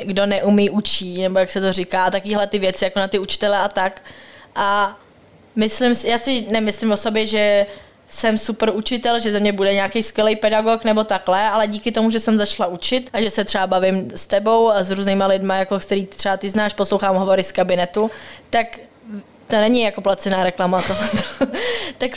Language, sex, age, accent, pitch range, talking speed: Czech, female, 20-39, native, 195-225 Hz, 190 wpm